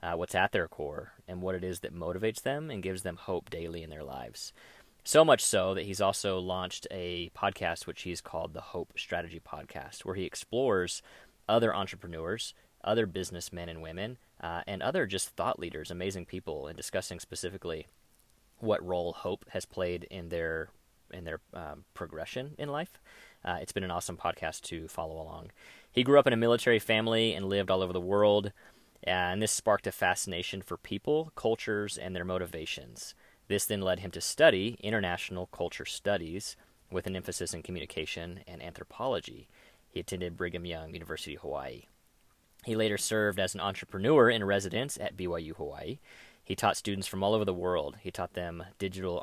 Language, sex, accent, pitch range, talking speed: English, male, American, 90-110 Hz, 180 wpm